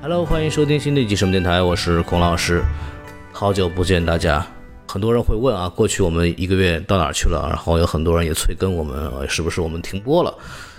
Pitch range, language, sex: 85-100 Hz, Chinese, male